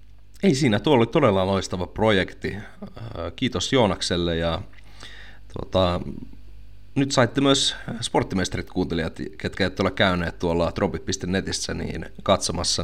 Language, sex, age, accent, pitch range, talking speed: Finnish, male, 30-49, native, 90-110 Hz, 105 wpm